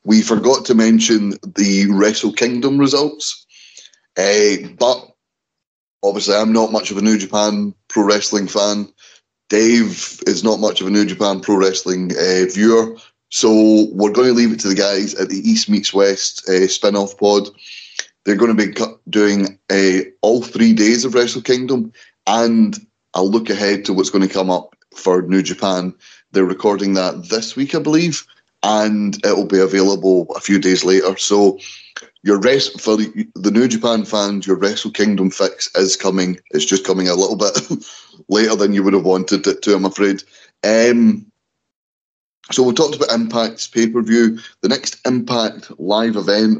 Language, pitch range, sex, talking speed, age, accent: English, 100-115 Hz, male, 175 wpm, 20-39, British